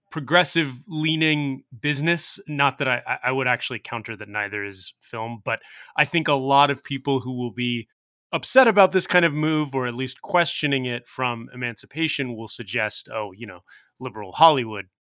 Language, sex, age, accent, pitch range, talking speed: English, male, 30-49, American, 120-160 Hz, 175 wpm